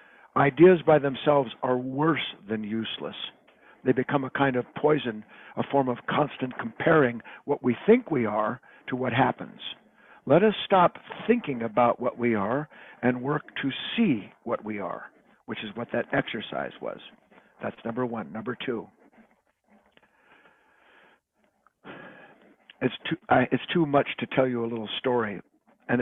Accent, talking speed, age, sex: American, 150 wpm, 60-79, male